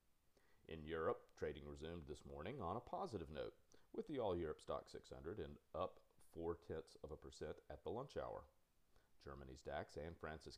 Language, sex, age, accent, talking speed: English, male, 40-59, American, 175 wpm